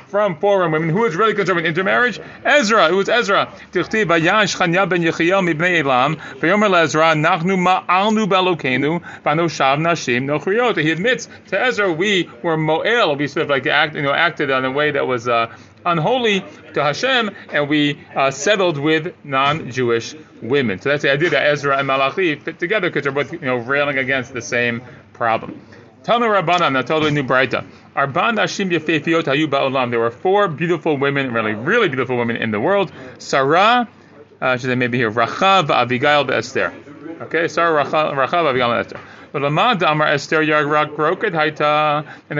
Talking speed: 145 wpm